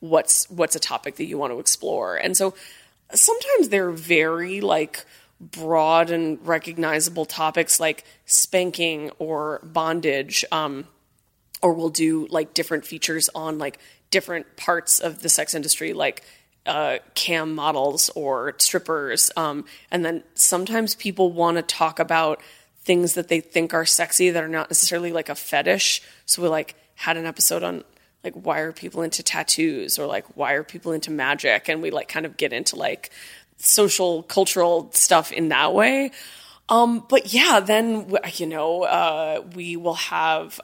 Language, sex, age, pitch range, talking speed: English, female, 20-39, 160-180 Hz, 160 wpm